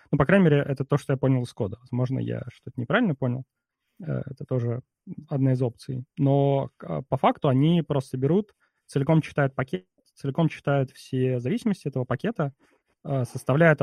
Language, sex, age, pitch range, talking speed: Russian, male, 20-39, 125-145 Hz, 160 wpm